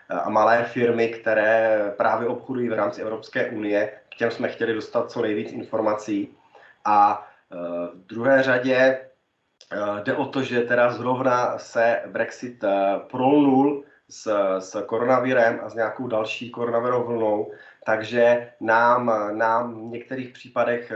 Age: 30-49